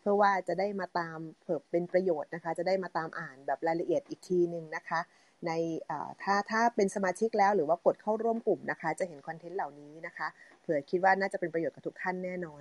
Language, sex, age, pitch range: Thai, female, 30-49, 165-200 Hz